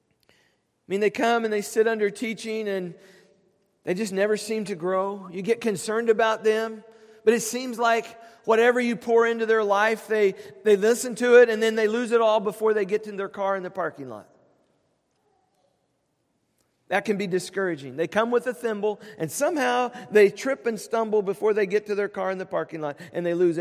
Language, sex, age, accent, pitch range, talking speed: English, male, 40-59, American, 190-225 Hz, 205 wpm